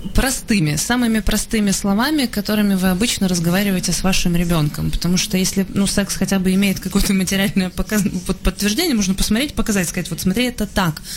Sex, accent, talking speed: female, native, 160 wpm